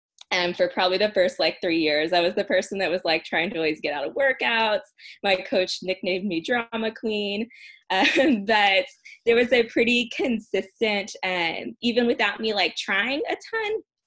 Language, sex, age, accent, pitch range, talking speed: English, female, 20-39, American, 175-215 Hz, 185 wpm